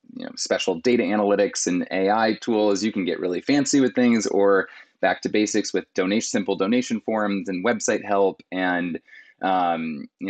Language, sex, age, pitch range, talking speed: English, male, 20-39, 95-120 Hz, 170 wpm